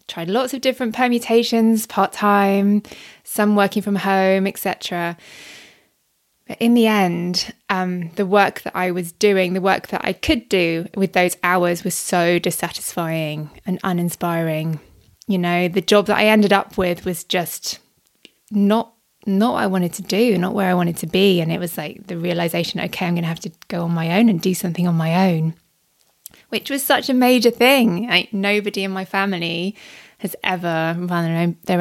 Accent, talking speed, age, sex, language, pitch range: British, 185 wpm, 20-39, female, English, 175-210 Hz